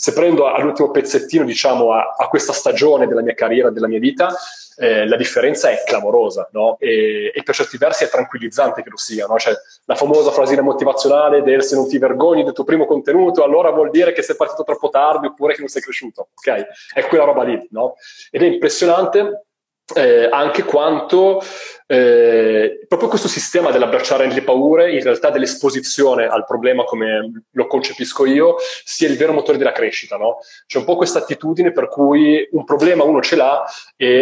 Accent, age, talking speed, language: native, 30-49, 190 wpm, Italian